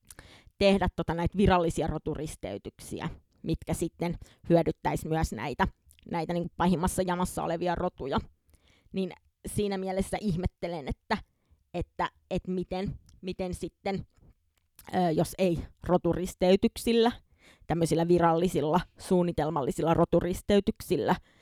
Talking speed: 90 wpm